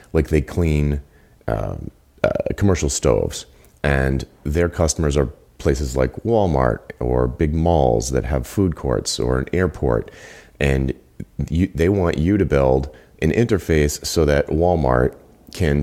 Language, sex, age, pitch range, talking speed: English, male, 30-49, 70-85 Hz, 140 wpm